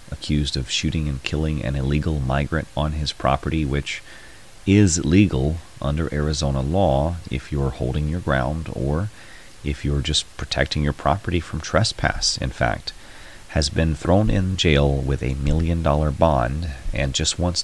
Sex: male